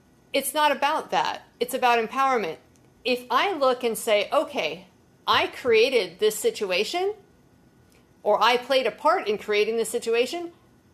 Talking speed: 145 wpm